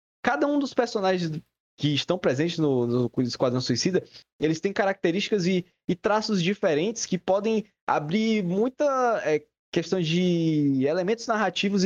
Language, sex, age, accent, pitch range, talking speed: Portuguese, male, 20-39, Brazilian, 135-200 Hz, 135 wpm